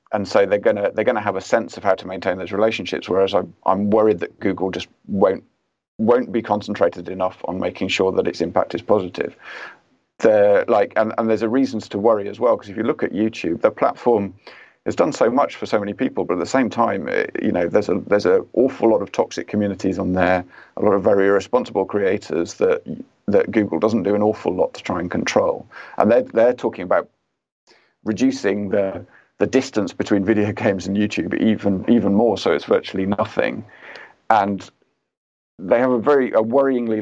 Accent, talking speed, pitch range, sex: British, 210 wpm, 100-120 Hz, male